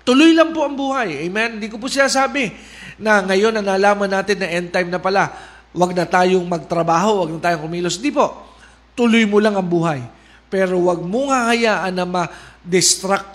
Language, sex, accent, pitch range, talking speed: Filipino, male, native, 165-200 Hz, 190 wpm